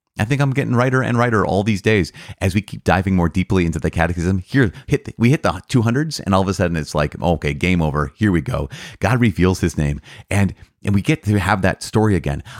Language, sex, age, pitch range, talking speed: English, male, 30-49, 80-110 Hz, 250 wpm